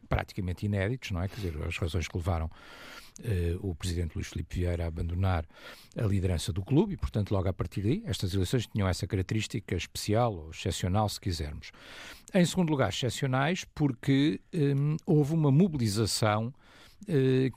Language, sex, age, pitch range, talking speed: Portuguese, male, 50-69, 95-120 Hz, 165 wpm